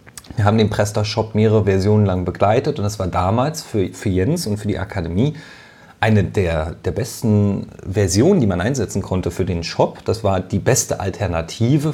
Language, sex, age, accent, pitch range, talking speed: German, male, 40-59, German, 105-140 Hz, 180 wpm